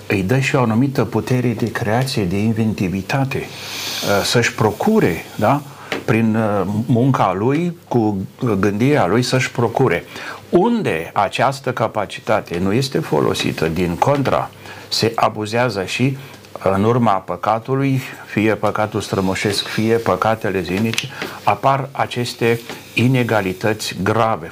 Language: Romanian